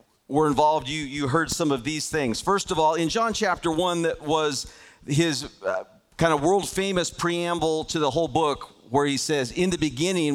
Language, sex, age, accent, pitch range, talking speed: English, male, 40-59, American, 140-165 Hz, 195 wpm